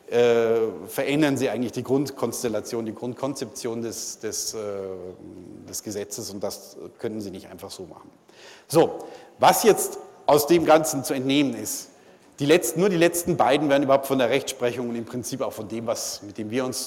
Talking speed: 185 wpm